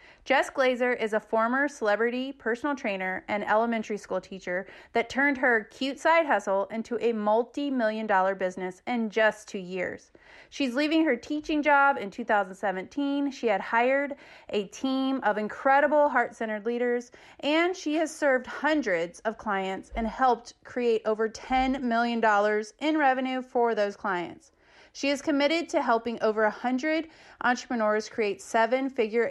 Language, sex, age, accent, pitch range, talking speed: English, female, 30-49, American, 215-275 Hz, 145 wpm